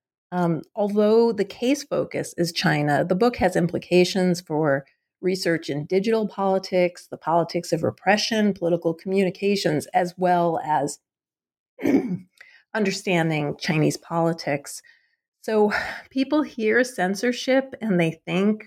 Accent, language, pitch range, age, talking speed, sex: American, English, 170-215 Hz, 40-59, 115 wpm, female